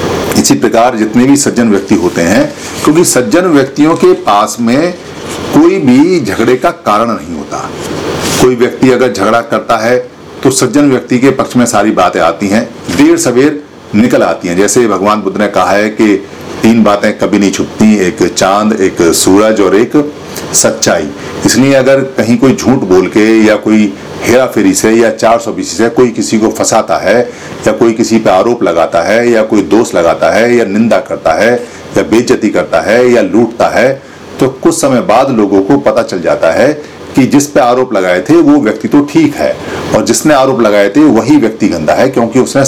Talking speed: 195 wpm